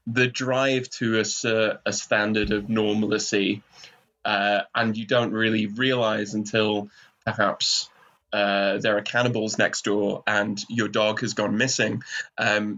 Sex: male